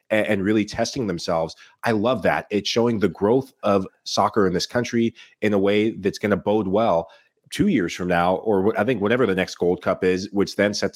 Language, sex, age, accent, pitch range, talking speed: English, male, 30-49, American, 95-115 Hz, 220 wpm